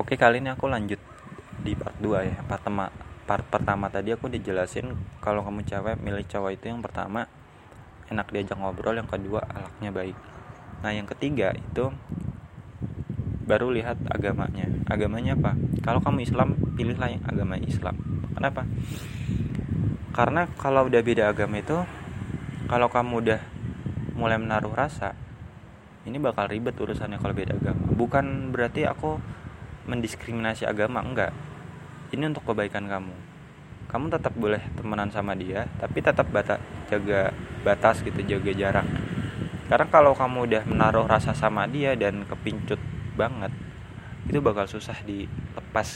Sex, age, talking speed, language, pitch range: male, 20-39, 140 wpm, Indonesian, 100-125 Hz